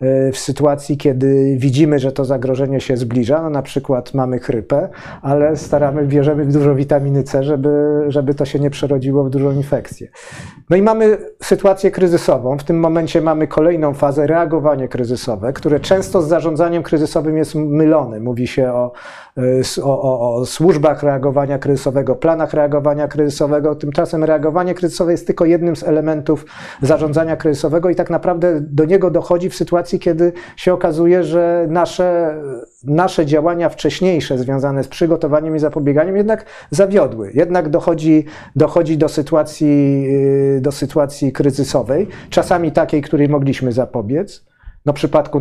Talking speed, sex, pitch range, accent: 145 wpm, male, 140-170 Hz, native